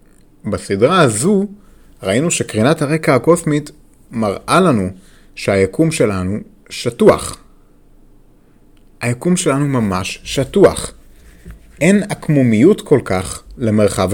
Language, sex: Hebrew, male